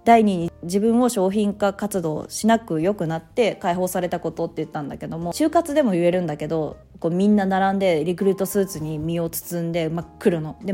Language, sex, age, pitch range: Japanese, female, 20-39, 165-215 Hz